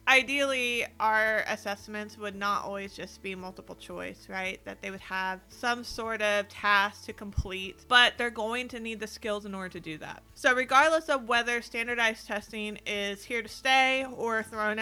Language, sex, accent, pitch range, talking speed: English, female, American, 195-235 Hz, 180 wpm